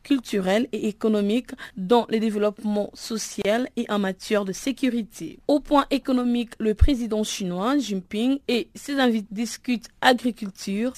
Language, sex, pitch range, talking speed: French, female, 205-250 Hz, 130 wpm